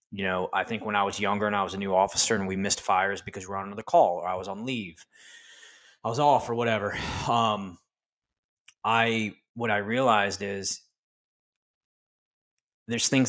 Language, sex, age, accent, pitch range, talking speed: English, male, 20-39, American, 95-115 Hz, 185 wpm